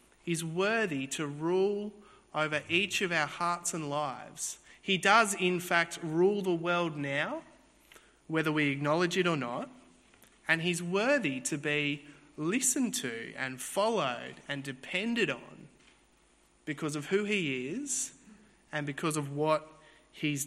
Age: 30-49